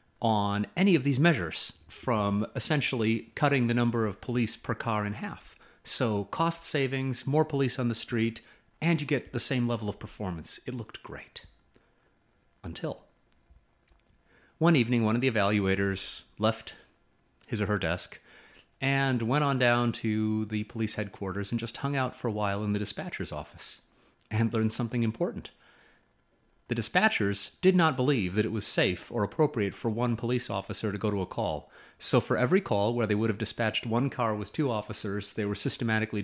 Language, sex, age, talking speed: English, male, 30-49, 175 wpm